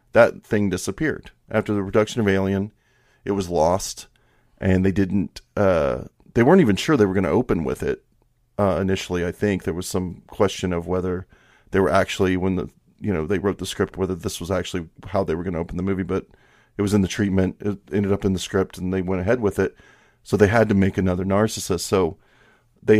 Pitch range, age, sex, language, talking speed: 95-115 Hz, 40-59, male, English, 225 wpm